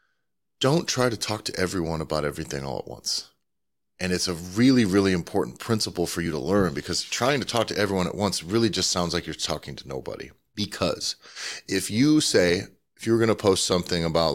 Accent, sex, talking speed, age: American, male, 205 wpm, 30-49